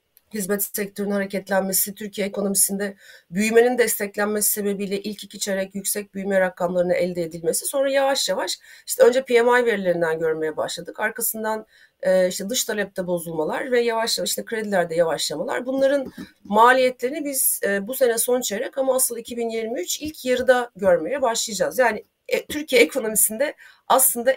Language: Turkish